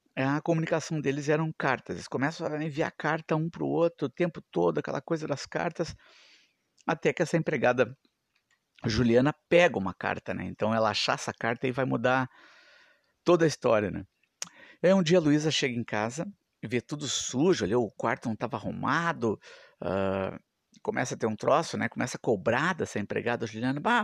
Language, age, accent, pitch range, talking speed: Portuguese, 50-69, Brazilian, 120-165 Hz, 185 wpm